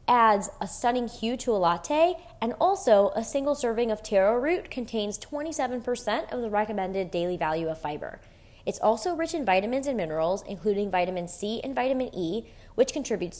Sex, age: female, 20-39